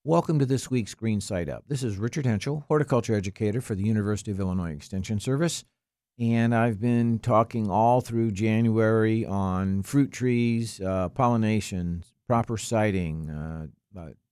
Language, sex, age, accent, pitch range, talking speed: English, male, 50-69, American, 95-115 Hz, 150 wpm